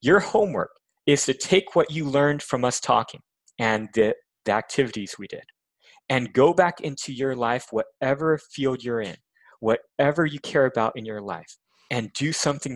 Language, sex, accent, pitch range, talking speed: English, male, American, 115-145 Hz, 175 wpm